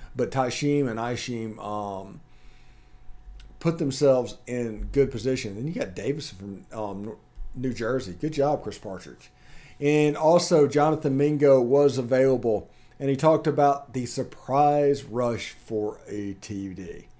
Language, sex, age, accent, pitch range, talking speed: English, male, 40-59, American, 105-135 Hz, 135 wpm